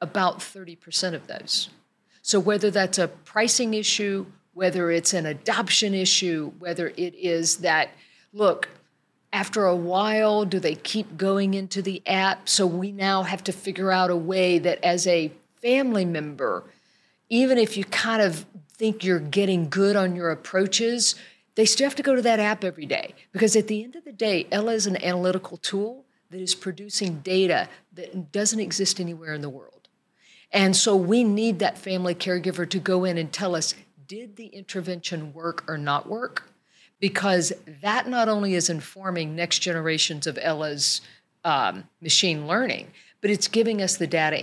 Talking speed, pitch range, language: 175 wpm, 175-210 Hz, English